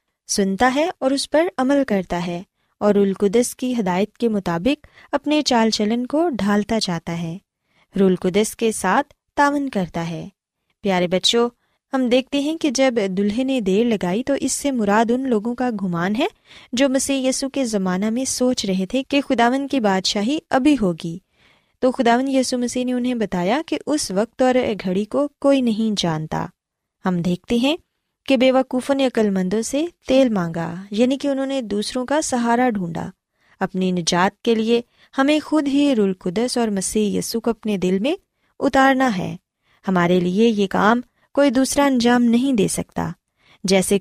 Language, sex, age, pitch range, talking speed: Urdu, female, 20-39, 195-265 Hz, 170 wpm